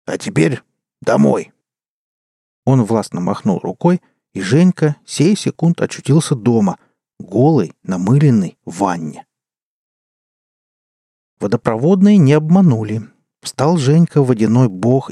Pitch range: 110-155 Hz